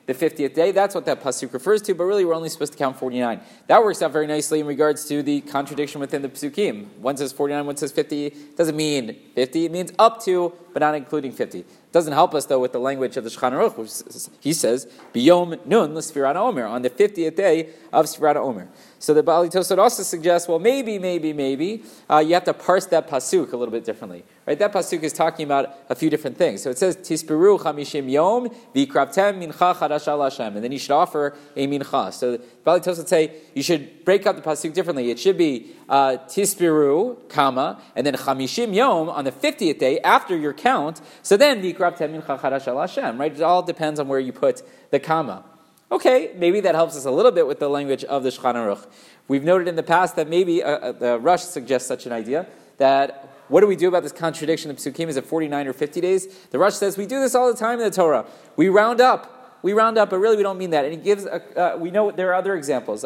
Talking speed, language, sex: 225 wpm, English, male